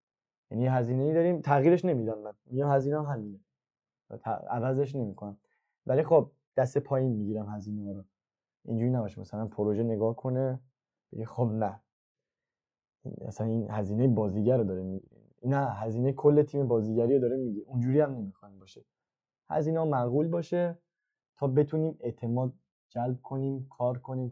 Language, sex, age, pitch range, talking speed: Persian, male, 20-39, 110-140 Hz, 145 wpm